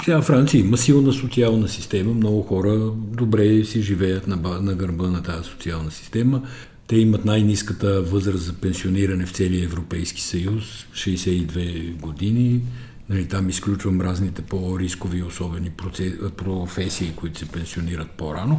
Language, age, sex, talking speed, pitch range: Bulgarian, 50-69, male, 125 wpm, 90-120 Hz